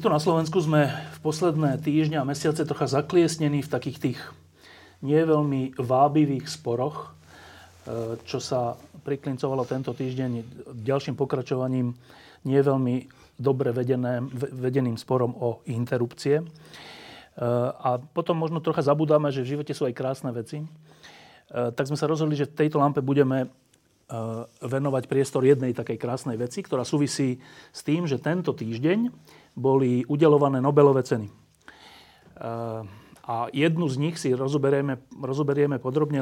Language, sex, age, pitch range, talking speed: Slovak, male, 30-49, 125-150 Hz, 125 wpm